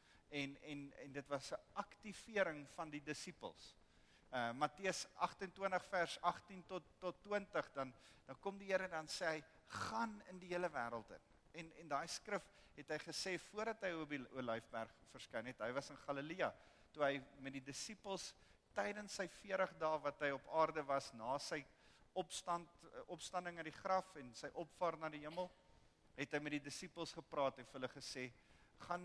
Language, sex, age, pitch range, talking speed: English, male, 50-69, 135-185 Hz, 180 wpm